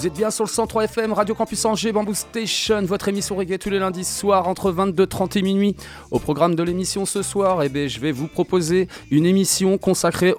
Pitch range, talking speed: 145-185 Hz, 210 wpm